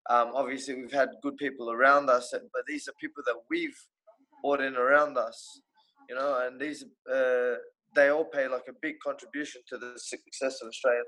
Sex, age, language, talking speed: male, 20-39, English, 190 wpm